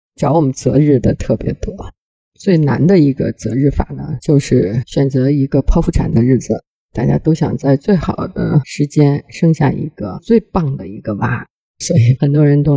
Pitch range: 140-180 Hz